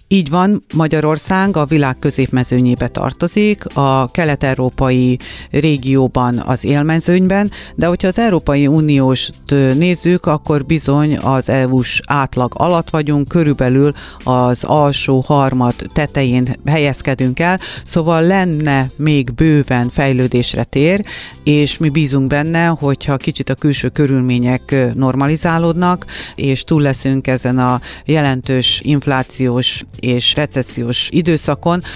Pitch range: 125-155 Hz